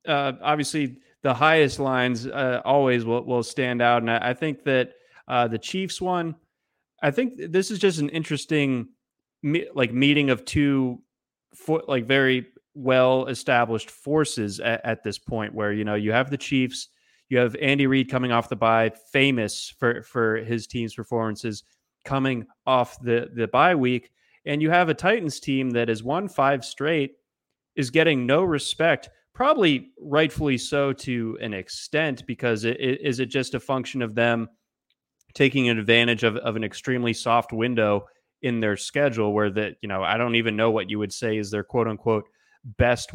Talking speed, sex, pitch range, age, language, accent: 175 wpm, male, 115-135 Hz, 30-49, English, American